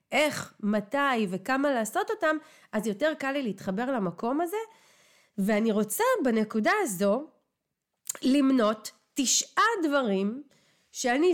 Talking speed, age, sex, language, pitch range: 105 wpm, 30-49, female, Hebrew, 200-285 Hz